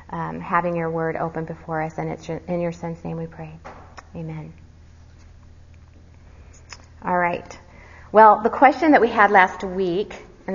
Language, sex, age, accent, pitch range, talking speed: English, female, 30-49, American, 175-220 Hz, 155 wpm